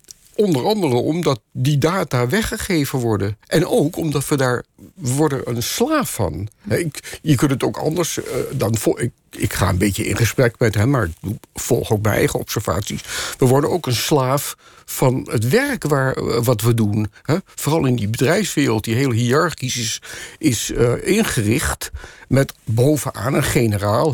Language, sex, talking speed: Dutch, male, 170 wpm